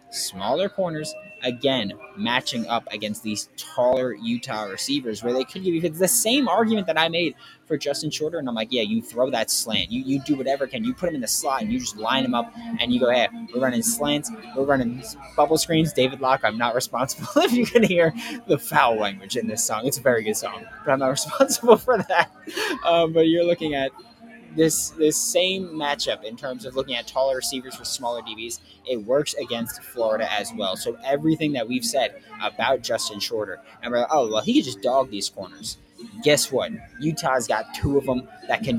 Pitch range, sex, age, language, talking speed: 125-185 Hz, male, 20-39, English, 215 wpm